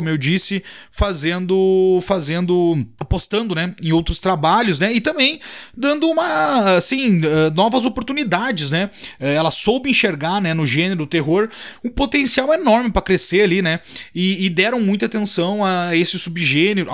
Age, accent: 30-49, Brazilian